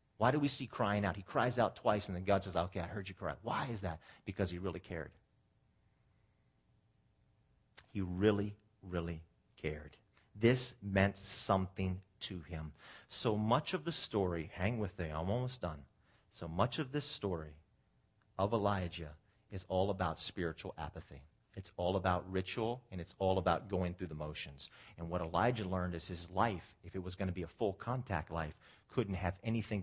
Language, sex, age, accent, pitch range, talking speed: English, male, 40-59, American, 95-125 Hz, 180 wpm